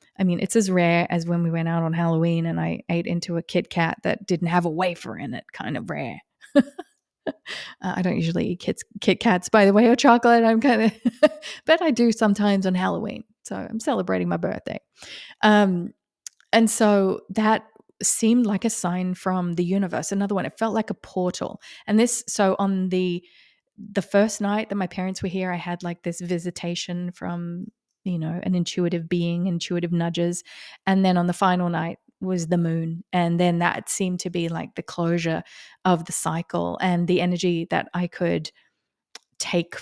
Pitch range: 175-205 Hz